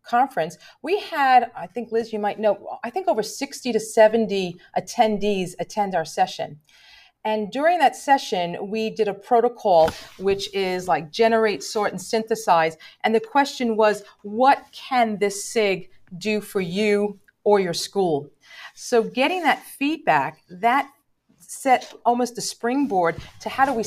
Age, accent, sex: 40-59, American, female